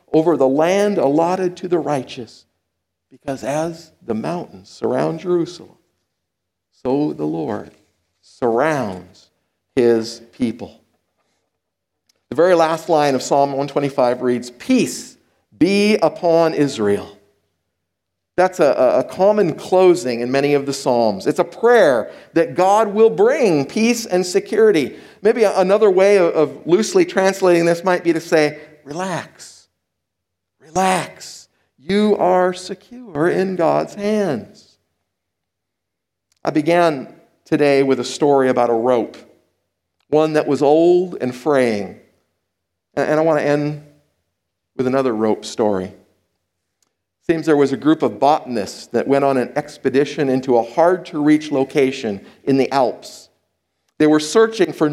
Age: 50-69